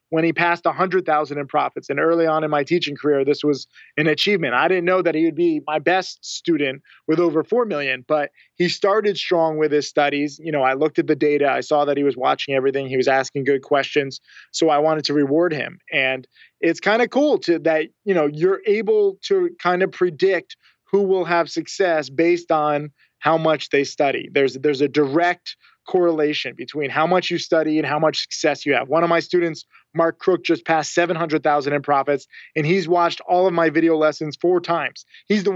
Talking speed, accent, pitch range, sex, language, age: 215 wpm, American, 145-170 Hz, male, English, 20-39